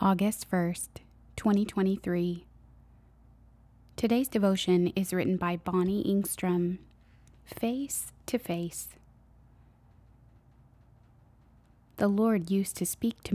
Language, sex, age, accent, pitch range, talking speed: English, female, 20-39, American, 160-195 Hz, 85 wpm